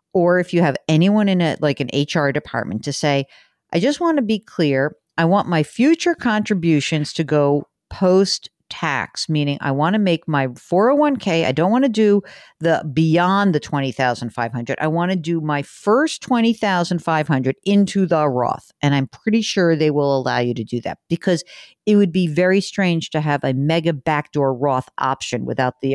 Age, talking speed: 50-69, 185 wpm